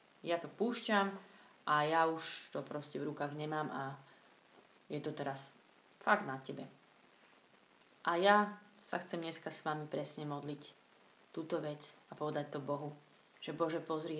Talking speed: 150 wpm